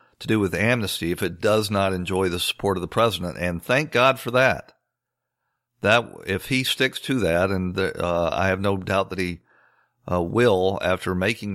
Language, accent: English, American